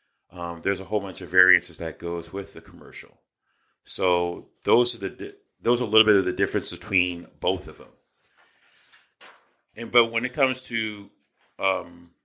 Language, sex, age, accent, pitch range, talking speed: English, male, 30-49, American, 90-110 Hz, 170 wpm